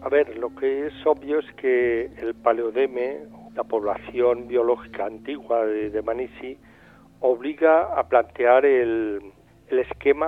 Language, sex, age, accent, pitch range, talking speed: Spanish, male, 50-69, Spanish, 115-180 Hz, 135 wpm